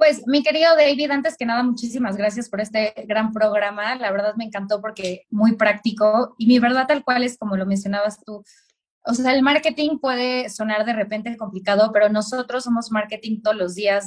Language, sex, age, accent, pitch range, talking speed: Spanish, female, 20-39, Mexican, 195-230 Hz, 195 wpm